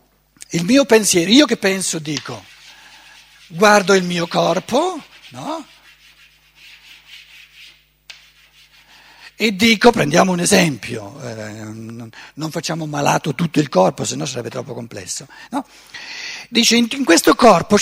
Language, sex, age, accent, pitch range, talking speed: Italian, male, 60-79, native, 150-250 Hz, 100 wpm